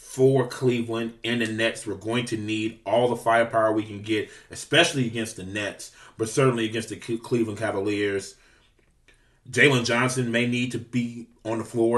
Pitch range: 110-125 Hz